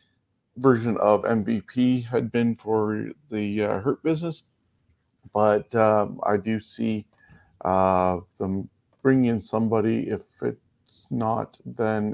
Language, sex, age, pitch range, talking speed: English, male, 40-59, 100-125 Hz, 120 wpm